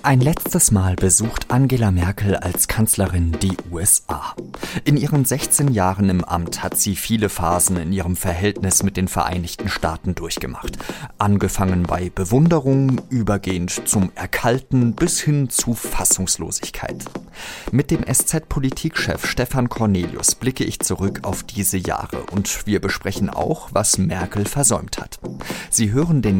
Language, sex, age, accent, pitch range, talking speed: German, male, 40-59, German, 90-115 Hz, 135 wpm